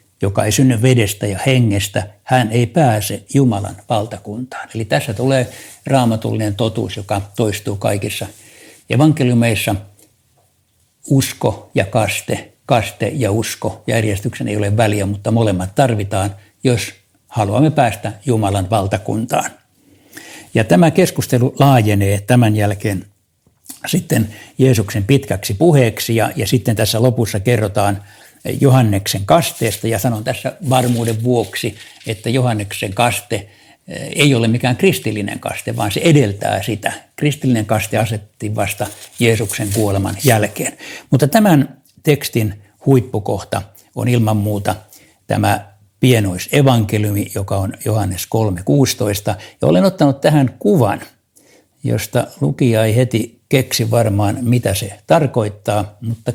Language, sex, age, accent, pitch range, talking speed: Finnish, male, 60-79, native, 105-130 Hz, 115 wpm